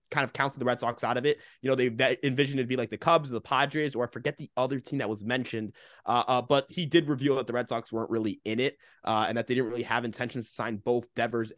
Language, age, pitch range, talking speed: English, 20-39, 125-180 Hz, 295 wpm